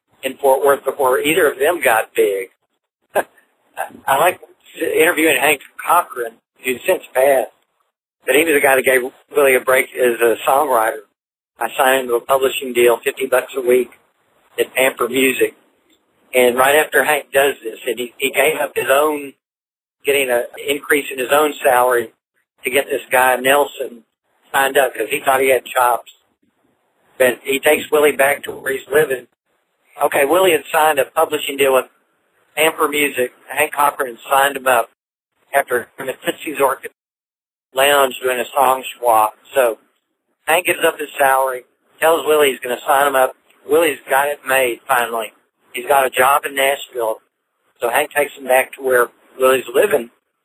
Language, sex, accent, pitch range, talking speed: English, male, American, 130-150 Hz, 175 wpm